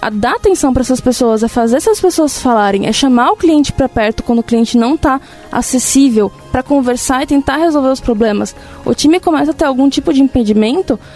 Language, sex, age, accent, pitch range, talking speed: Portuguese, female, 20-39, Brazilian, 230-285 Hz, 210 wpm